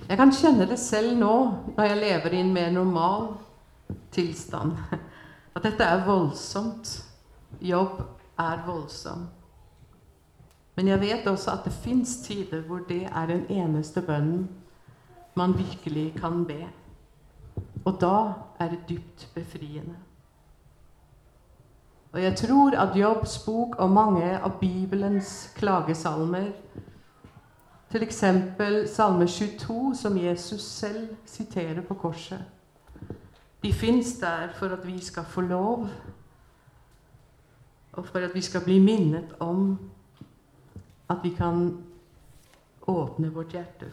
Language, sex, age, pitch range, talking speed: Swedish, female, 50-69, 165-200 Hz, 125 wpm